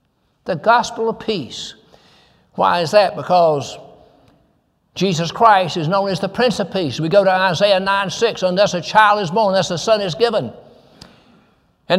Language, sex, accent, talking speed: English, male, American, 170 wpm